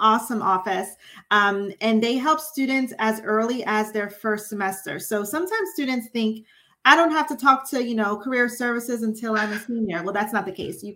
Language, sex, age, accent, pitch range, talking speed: English, female, 30-49, American, 195-240 Hz, 205 wpm